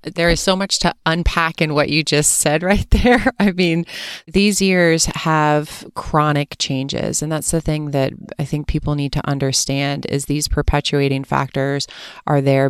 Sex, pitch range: female, 135-155 Hz